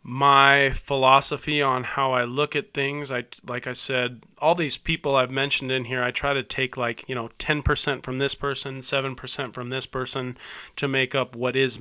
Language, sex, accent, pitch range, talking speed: English, male, American, 125-140 Hz, 200 wpm